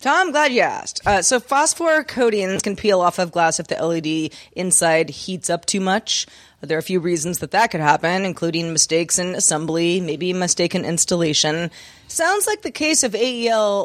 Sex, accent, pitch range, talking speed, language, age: female, American, 165-220 Hz, 185 wpm, English, 30-49